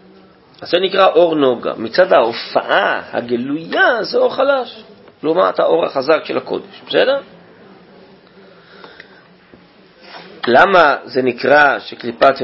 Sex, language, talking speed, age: male, Hebrew, 105 wpm, 40-59